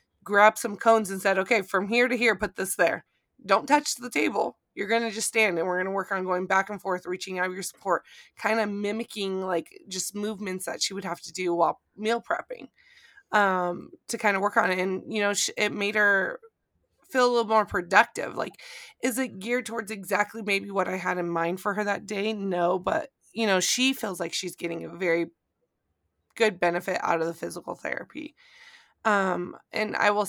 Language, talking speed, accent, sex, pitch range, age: English, 215 wpm, American, female, 180-225 Hz, 20-39